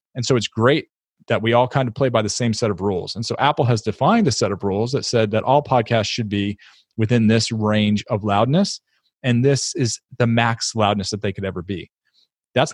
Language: English